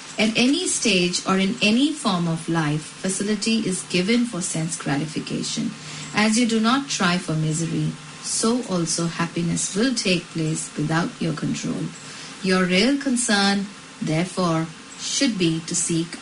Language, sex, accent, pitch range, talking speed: English, female, Indian, 170-235 Hz, 145 wpm